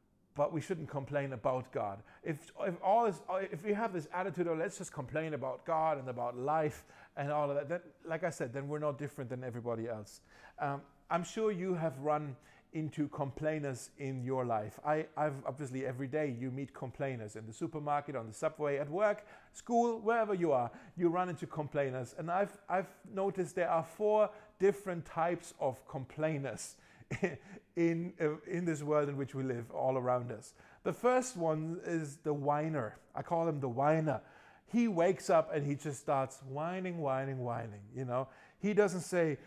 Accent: German